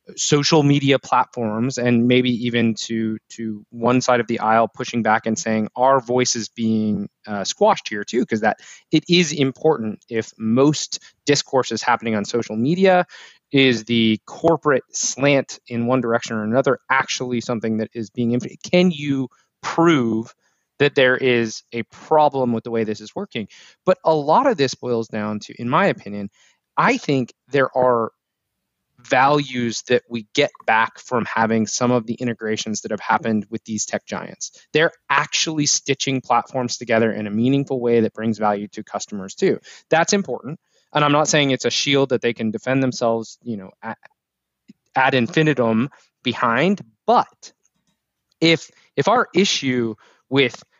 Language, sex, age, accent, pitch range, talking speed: English, male, 20-39, American, 110-140 Hz, 165 wpm